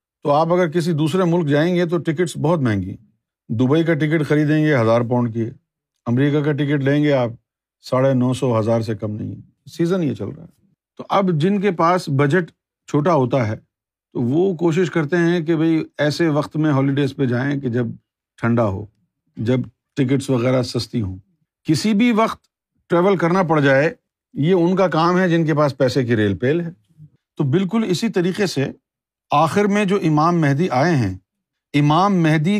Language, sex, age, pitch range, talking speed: Urdu, male, 50-69, 135-180 Hz, 190 wpm